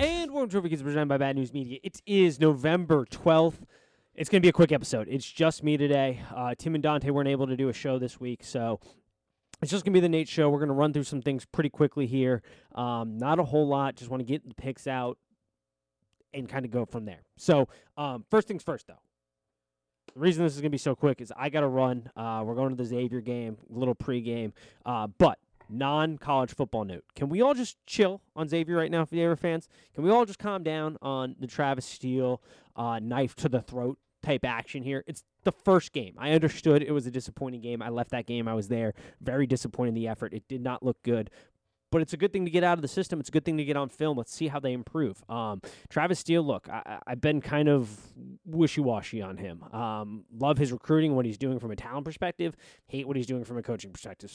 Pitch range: 120-160 Hz